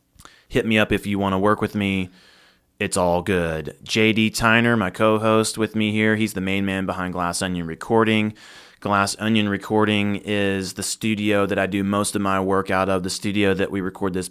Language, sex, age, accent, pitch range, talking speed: English, male, 20-39, American, 85-105 Hz, 205 wpm